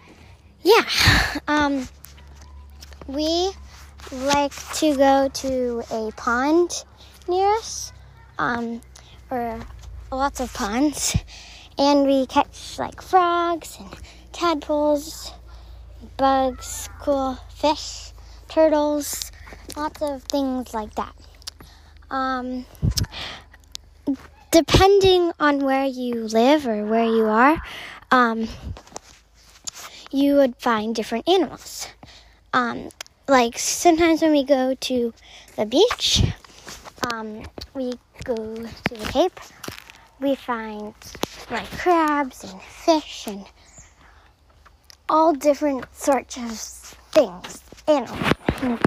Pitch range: 230-300 Hz